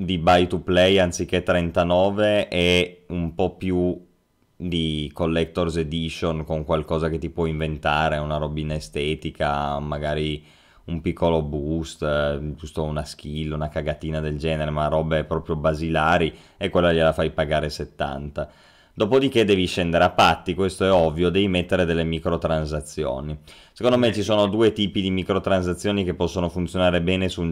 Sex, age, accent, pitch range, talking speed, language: male, 20-39, native, 80-90 Hz, 155 wpm, Italian